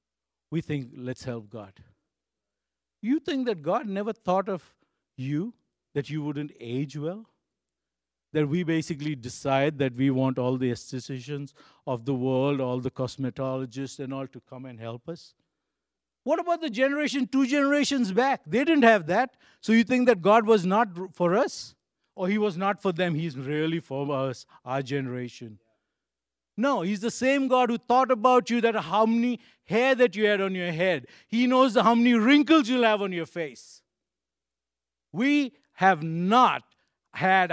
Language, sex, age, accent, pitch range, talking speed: English, male, 50-69, Indian, 130-210 Hz, 170 wpm